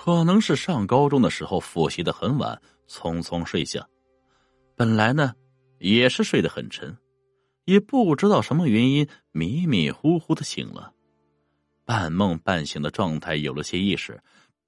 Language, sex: Chinese, male